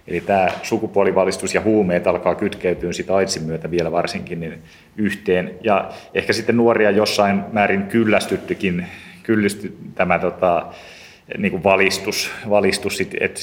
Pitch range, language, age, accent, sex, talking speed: 90-105 Hz, Finnish, 30-49, native, male, 120 wpm